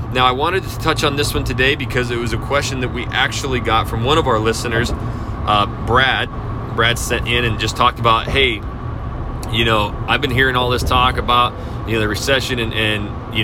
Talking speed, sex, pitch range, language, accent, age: 220 wpm, male, 110-125 Hz, English, American, 30-49